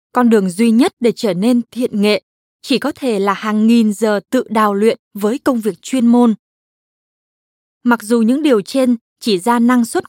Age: 20-39